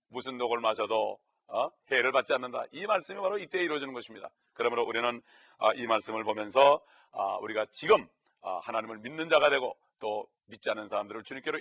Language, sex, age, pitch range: Korean, male, 40-59, 125-160 Hz